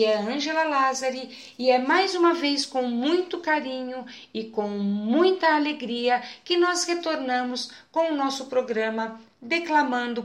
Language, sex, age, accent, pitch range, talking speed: Portuguese, female, 50-69, Brazilian, 225-305 Hz, 140 wpm